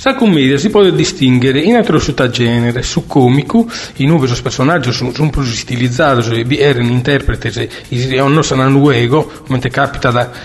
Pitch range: 125-155 Hz